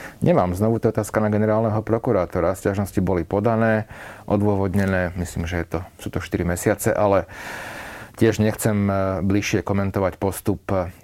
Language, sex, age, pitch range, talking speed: Slovak, male, 40-59, 95-125 Hz, 130 wpm